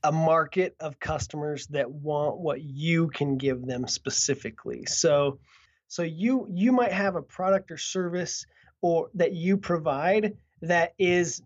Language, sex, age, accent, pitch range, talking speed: English, male, 20-39, American, 150-185 Hz, 145 wpm